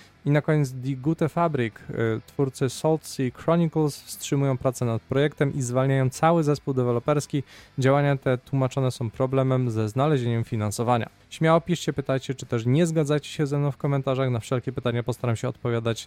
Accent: native